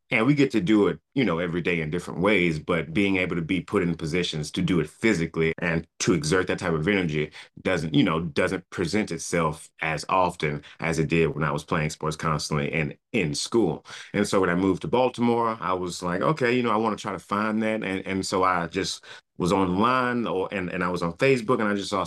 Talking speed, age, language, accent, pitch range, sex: 245 wpm, 30-49, English, American, 85-115 Hz, male